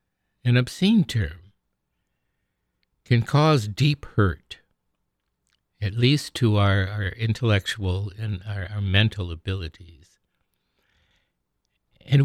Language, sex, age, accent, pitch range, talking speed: English, male, 60-79, American, 100-130 Hz, 95 wpm